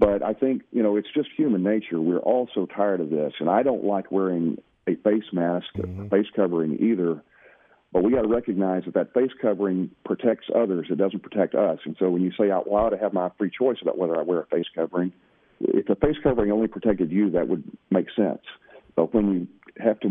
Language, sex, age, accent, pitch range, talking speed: English, male, 50-69, American, 90-105 Hz, 235 wpm